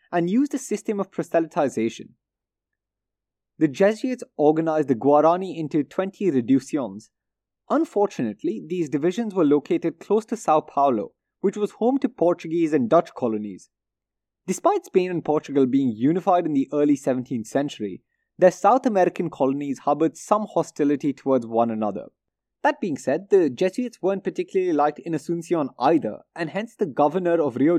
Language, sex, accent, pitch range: English, male, Indian, 130-190 Hz